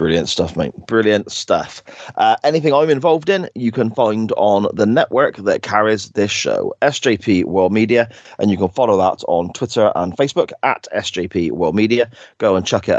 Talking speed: 185 wpm